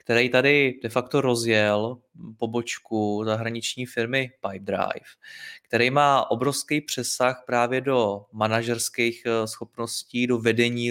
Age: 20-39